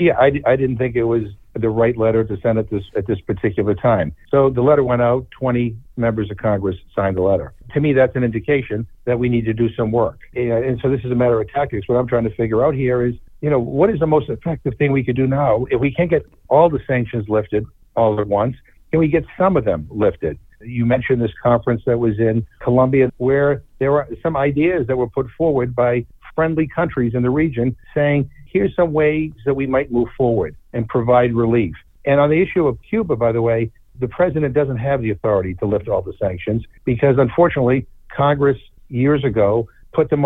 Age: 60-79